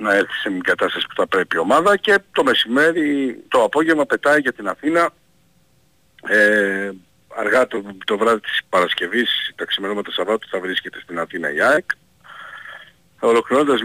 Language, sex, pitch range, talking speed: Greek, male, 95-140 Hz, 155 wpm